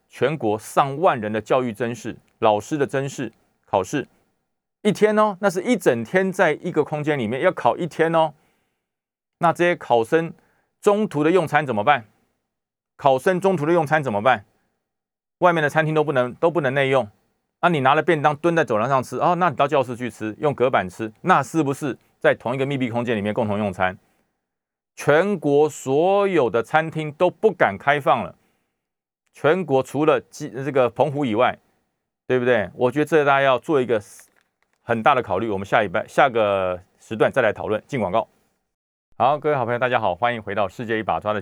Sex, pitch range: male, 110-160 Hz